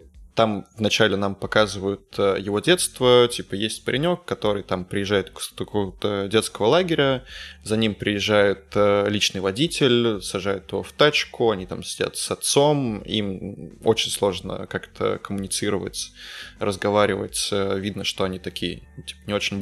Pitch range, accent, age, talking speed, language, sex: 100-115 Hz, native, 20-39, 130 wpm, Russian, male